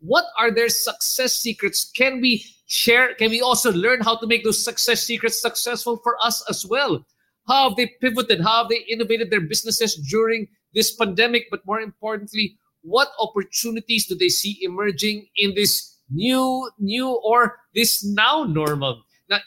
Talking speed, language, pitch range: 165 wpm, English, 165-225 Hz